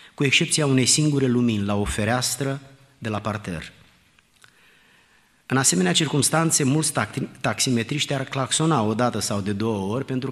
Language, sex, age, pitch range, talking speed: Romanian, male, 30-49, 110-145 Hz, 145 wpm